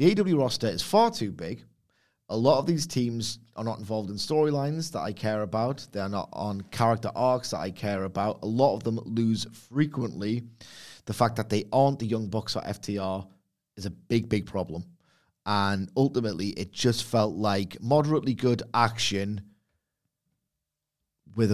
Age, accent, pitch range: 30-49, British, 100-120 Hz